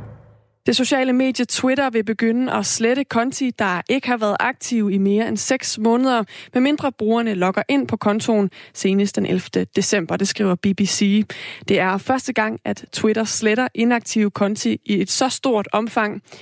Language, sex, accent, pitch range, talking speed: Danish, female, native, 200-240 Hz, 170 wpm